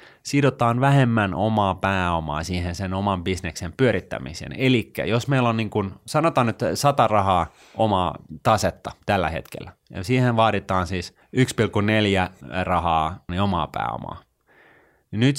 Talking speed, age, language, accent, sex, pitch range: 130 wpm, 30-49, Finnish, native, male, 90-120 Hz